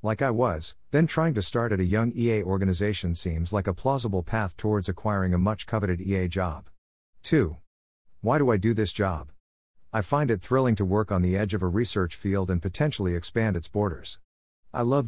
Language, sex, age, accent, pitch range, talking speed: English, male, 50-69, American, 90-115 Hz, 205 wpm